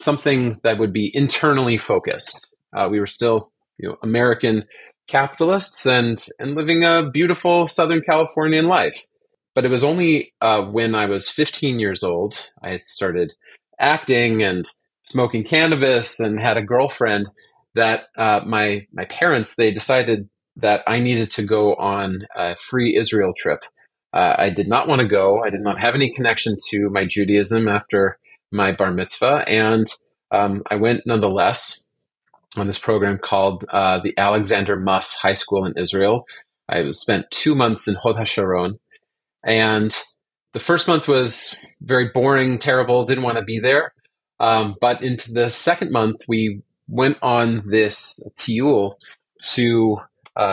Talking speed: 155 wpm